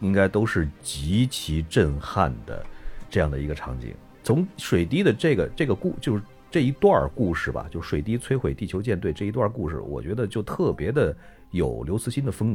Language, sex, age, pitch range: Chinese, male, 50-69, 95-155 Hz